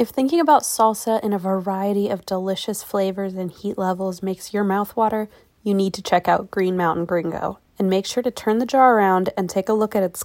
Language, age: English, 20-39